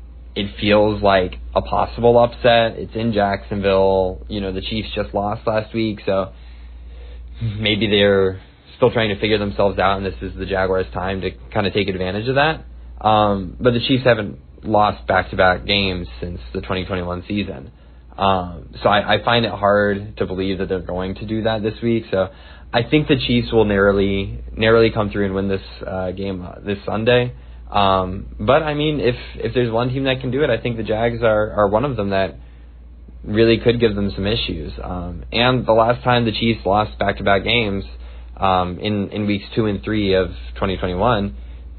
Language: English